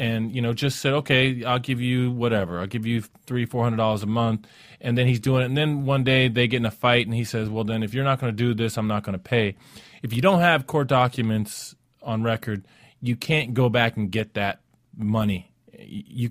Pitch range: 110-135 Hz